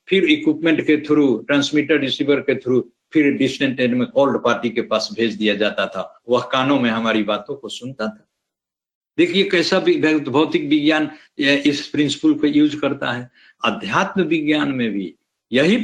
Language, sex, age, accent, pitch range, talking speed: Hindi, male, 60-79, native, 125-210 Hz, 145 wpm